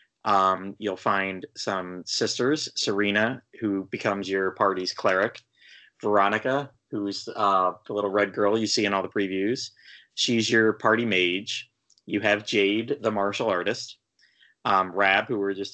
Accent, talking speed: American, 155 wpm